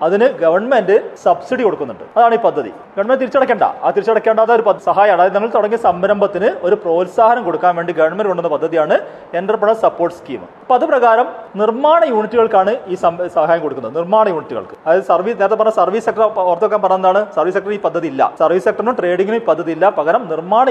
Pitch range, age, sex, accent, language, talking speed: 190-255 Hz, 40-59, male, native, Malayalam, 160 wpm